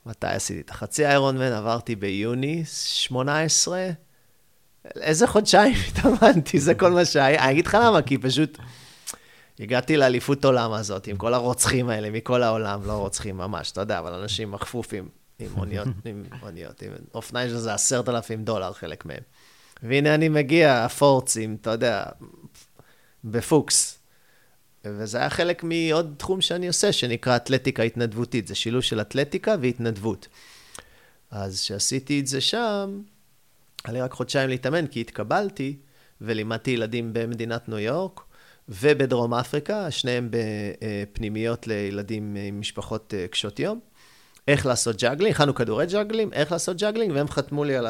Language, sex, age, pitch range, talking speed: Hebrew, male, 30-49, 110-145 Hz, 140 wpm